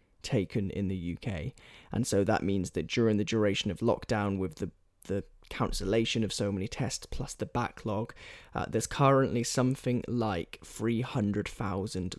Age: 10-29